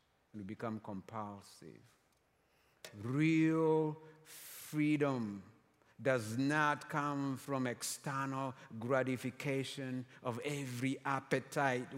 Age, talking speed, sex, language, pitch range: 50-69, 70 wpm, male, English, 115-170 Hz